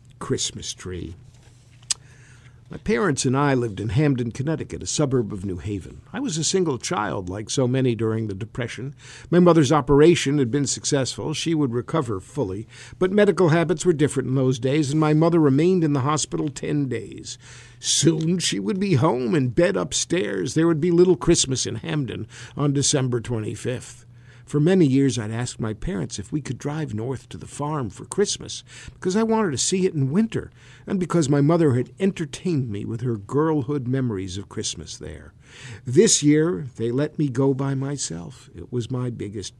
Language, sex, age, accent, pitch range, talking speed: English, male, 50-69, American, 120-155 Hz, 185 wpm